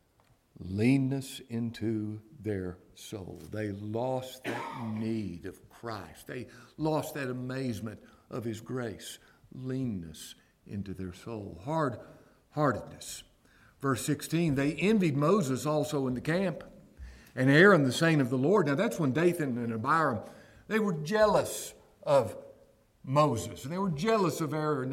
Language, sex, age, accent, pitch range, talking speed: English, male, 60-79, American, 120-175 Hz, 130 wpm